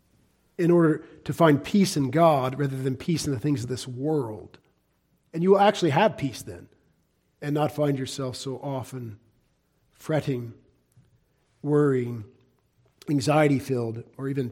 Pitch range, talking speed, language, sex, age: 150-215 Hz, 140 wpm, English, male, 50-69